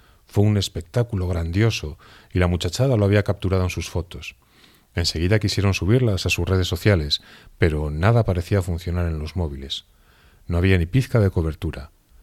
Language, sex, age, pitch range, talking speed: Spanish, male, 40-59, 85-105 Hz, 160 wpm